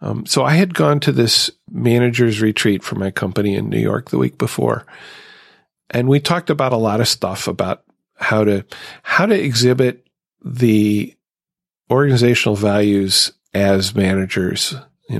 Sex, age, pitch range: male, 40-59, 105-120 Hz